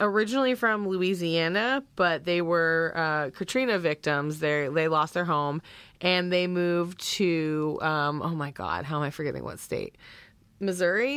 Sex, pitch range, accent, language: female, 155-195 Hz, American, English